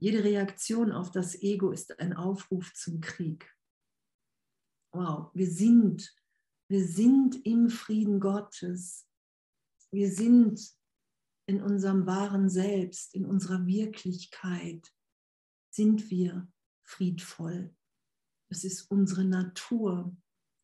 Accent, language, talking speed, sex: German, German, 100 wpm, female